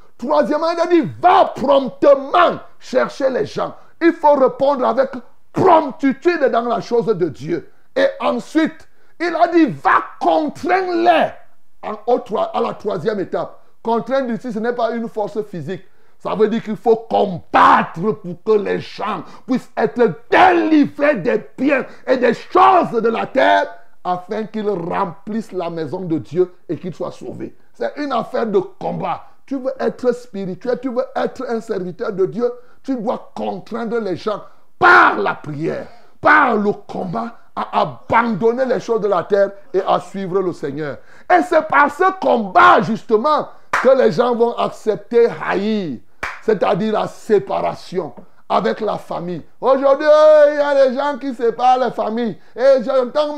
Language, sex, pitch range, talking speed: French, male, 215-290 Hz, 155 wpm